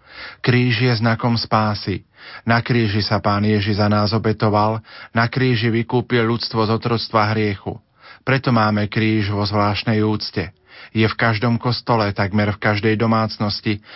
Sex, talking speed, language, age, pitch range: male, 140 wpm, Slovak, 40-59, 105-120 Hz